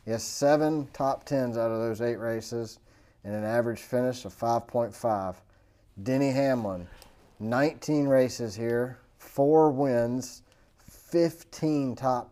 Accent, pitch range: American, 105-135 Hz